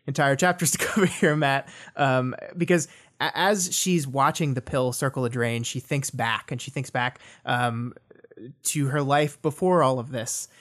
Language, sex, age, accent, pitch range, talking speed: English, male, 20-39, American, 130-155 Hz, 180 wpm